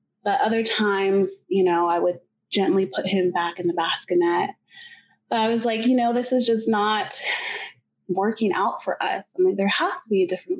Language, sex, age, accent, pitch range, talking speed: English, female, 20-39, American, 190-240 Hz, 205 wpm